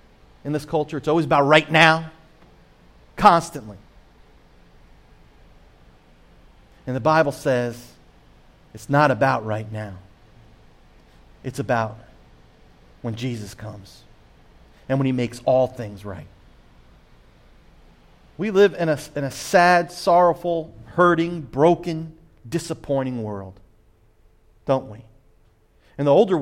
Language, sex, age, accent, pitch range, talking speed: English, male, 40-59, American, 110-160 Hz, 105 wpm